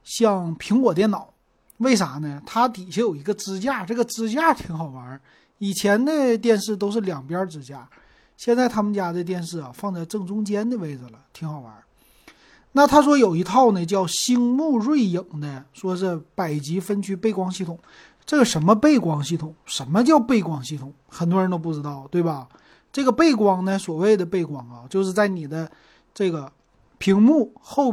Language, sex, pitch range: Chinese, male, 155-230 Hz